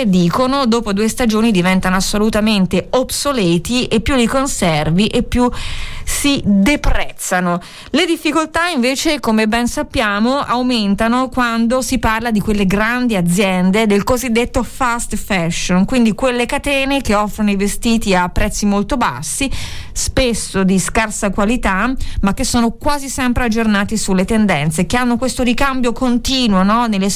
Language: Italian